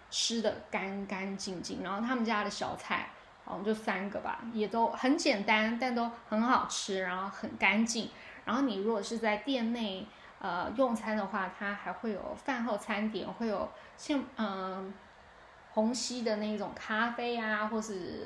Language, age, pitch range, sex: Chinese, 10-29, 205-255 Hz, female